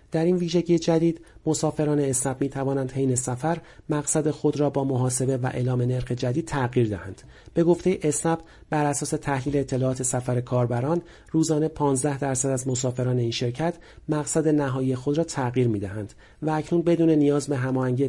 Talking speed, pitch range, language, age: 165 wpm, 125-155 Hz, Persian, 40-59